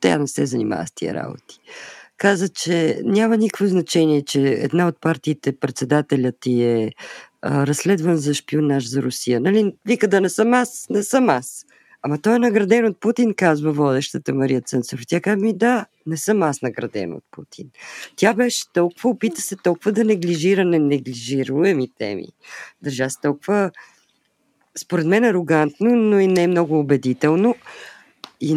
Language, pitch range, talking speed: Bulgarian, 145-195 Hz, 160 wpm